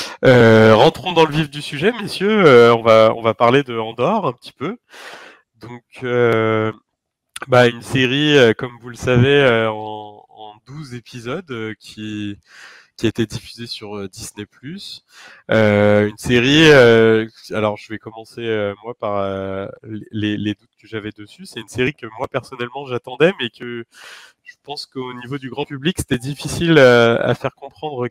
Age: 30-49